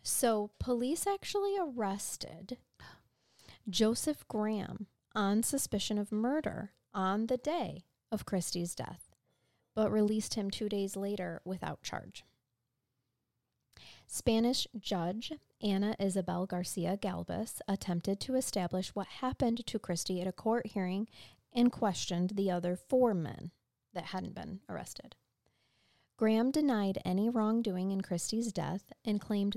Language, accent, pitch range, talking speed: English, American, 175-220 Hz, 120 wpm